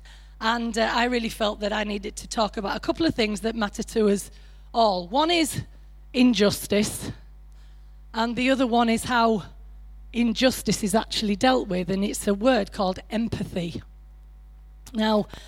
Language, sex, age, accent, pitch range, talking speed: English, female, 30-49, British, 195-240 Hz, 160 wpm